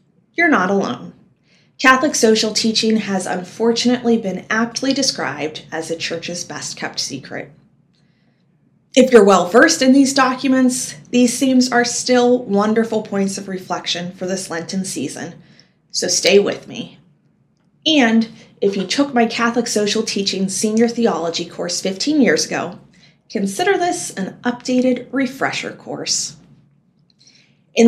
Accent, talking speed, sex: American, 125 wpm, female